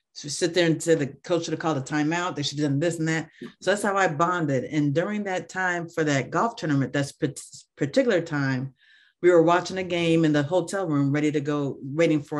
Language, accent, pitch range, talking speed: English, American, 145-175 Hz, 240 wpm